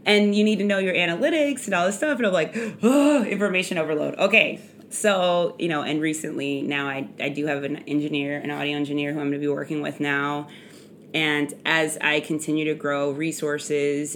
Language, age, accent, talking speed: English, 20-39, American, 205 wpm